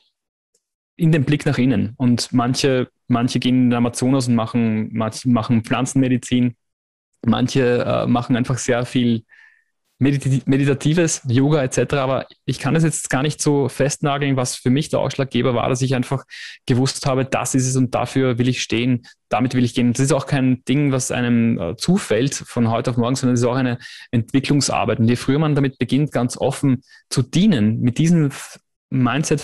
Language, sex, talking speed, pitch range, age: German, male, 180 wpm, 120-140 Hz, 20-39